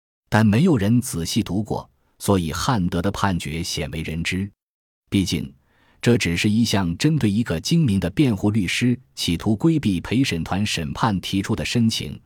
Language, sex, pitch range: Chinese, male, 85-120 Hz